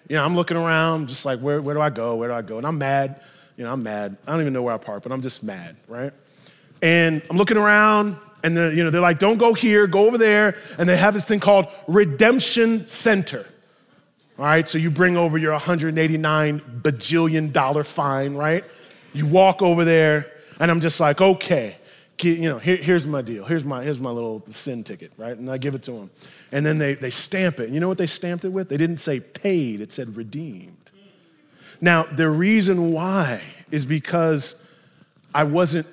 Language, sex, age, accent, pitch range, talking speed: English, male, 20-39, American, 145-190 Hz, 215 wpm